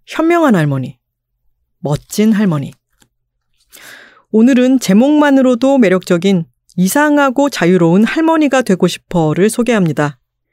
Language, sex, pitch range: Korean, female, 170-240 Hz